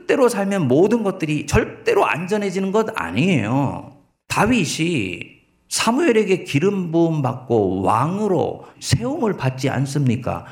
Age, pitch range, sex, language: 40-59, 130-200 Hz, male, Korean